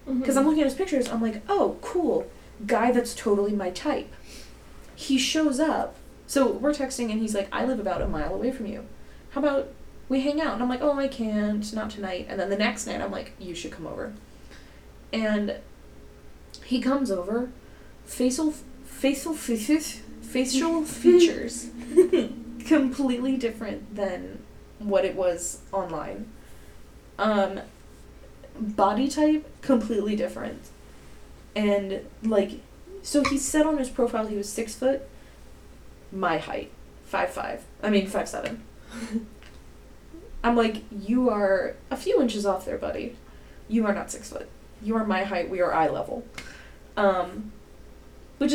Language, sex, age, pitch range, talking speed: English, female, 10-29, 200-280 Hz, 150 wpm